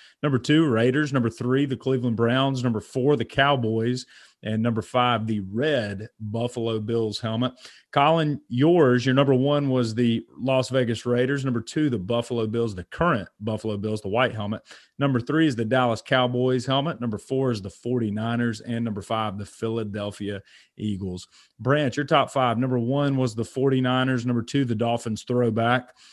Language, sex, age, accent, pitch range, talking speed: English, male, 30-49, American, 115-130 Hz, 170 wpm